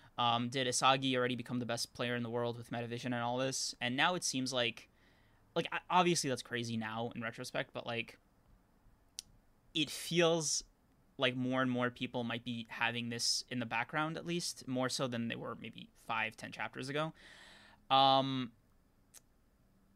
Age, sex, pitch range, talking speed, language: 20-39, male, 120-150 Hz, 170 wpm, English